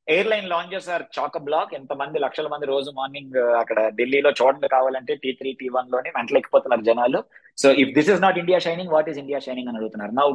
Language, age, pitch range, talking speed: Telugu, 20-39, 135-185 Hz, 210 wpm